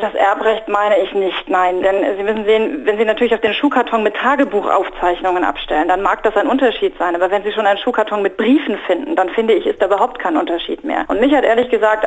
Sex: female